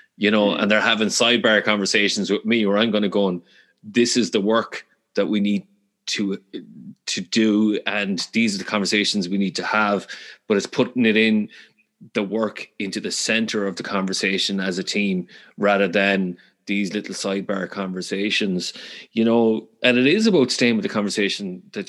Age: 30-49